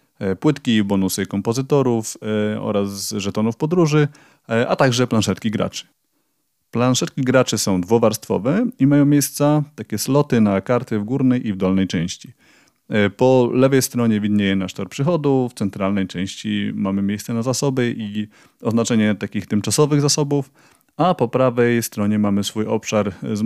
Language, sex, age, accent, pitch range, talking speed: Polish, male, 30-49, native, 95-130 Hz, 140 wpm